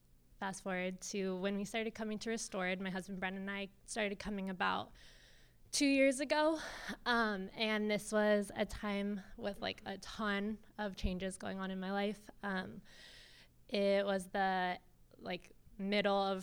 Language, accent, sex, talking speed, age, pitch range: English, American, female, 160 wpm, 20-39, 195-225 Hz